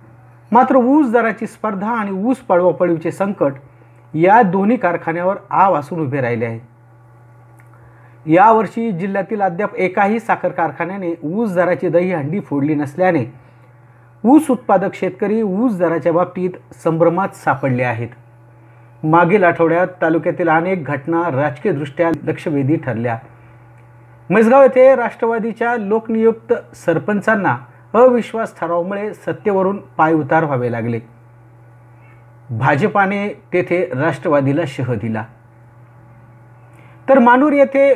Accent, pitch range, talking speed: native, 125-195 Hz, 100 wpm